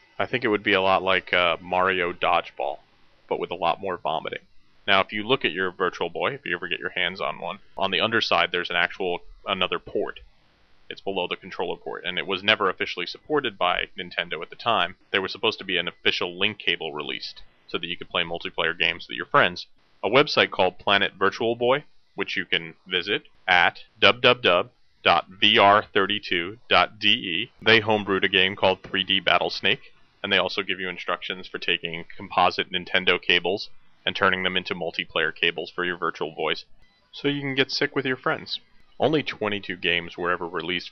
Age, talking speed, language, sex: 30-49, 190 wpm, English, male